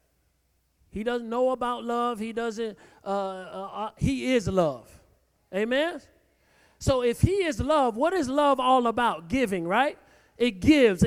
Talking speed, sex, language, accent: 150 wpm, male, English, American